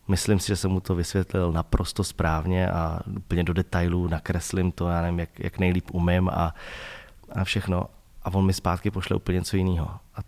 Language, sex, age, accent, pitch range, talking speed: Czech, male, 20-39, native, 85-95 Hz, 195 wpm